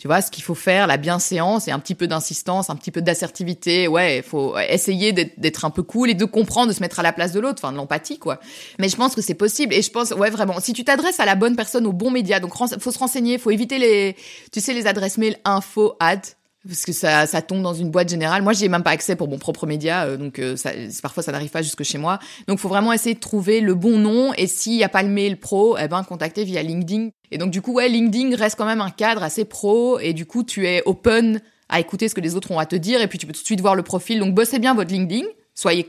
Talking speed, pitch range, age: 285 wpm, 160-215 Hz, 20-39